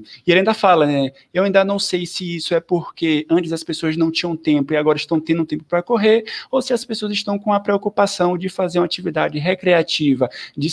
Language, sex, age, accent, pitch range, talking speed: Portuguese, male, 20-39, Brazilian, 155-220 Hz, 230 wpm